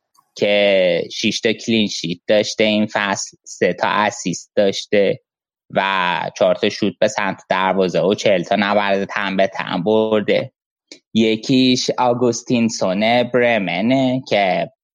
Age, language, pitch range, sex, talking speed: 20-39, Persian, 95-120 Hz, male, 120 wpm